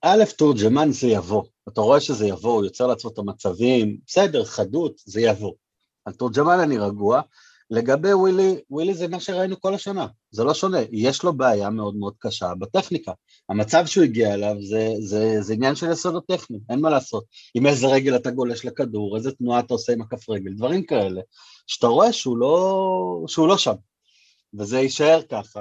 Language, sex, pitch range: Hebrew, male, 110-145 Hz